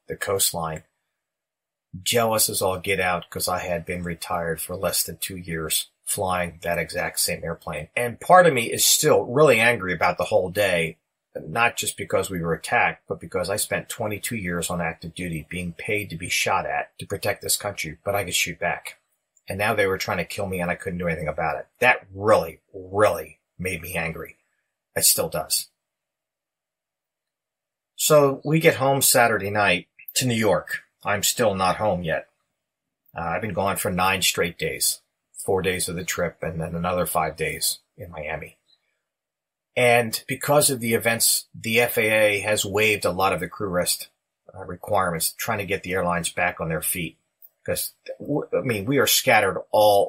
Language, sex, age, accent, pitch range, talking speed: English, male, 30-49, American, 85-110 Hz, 185 wpm